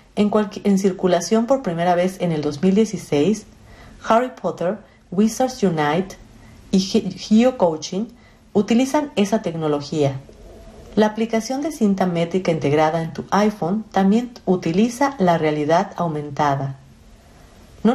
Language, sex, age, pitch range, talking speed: Spanish, female, 50-69, 155-215 Hz, 120 wpm